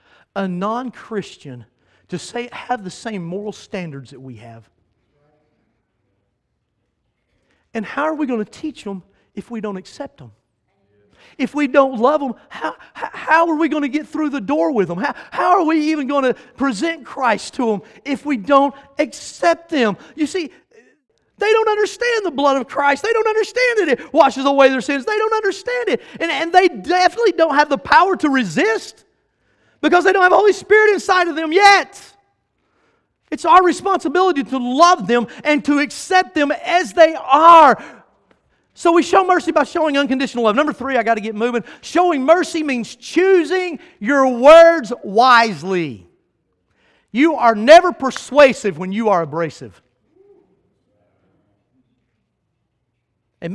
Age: 40-59